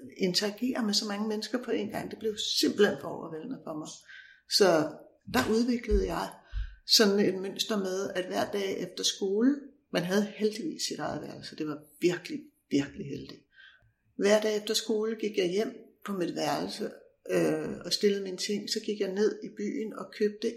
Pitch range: 190-235 Hz